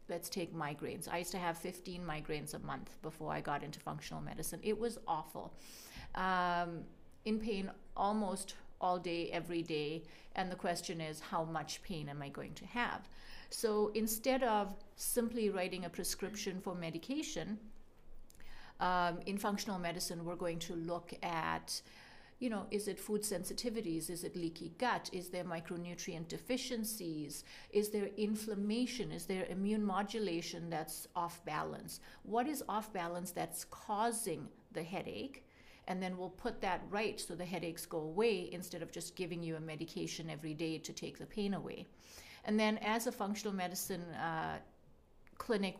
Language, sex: English, female